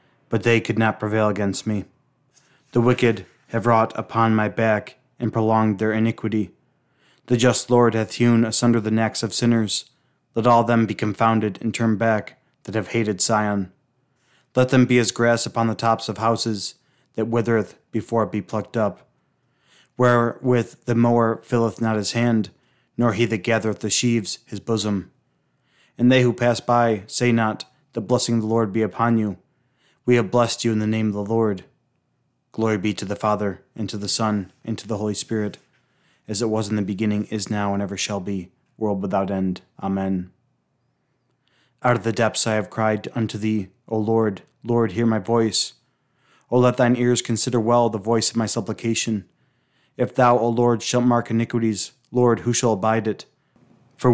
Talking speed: 185 wpm